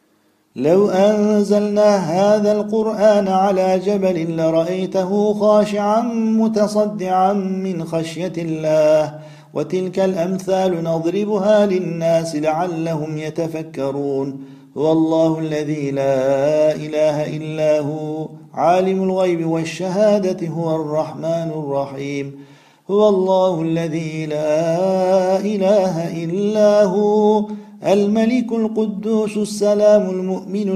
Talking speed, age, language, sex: 80 wpm, 50-69, Turkish, male